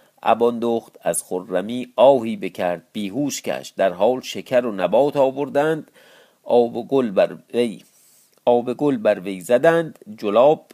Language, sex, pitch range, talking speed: Persian, male, 120-155 Hz, 110 wpm